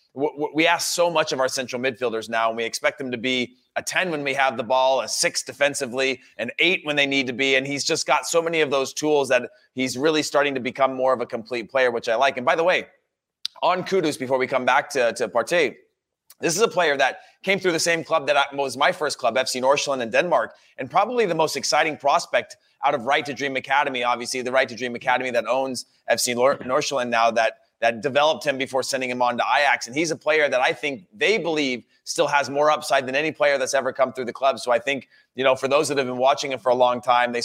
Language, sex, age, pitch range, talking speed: English, male, 30-49, 125-150 Hz, 255 wpm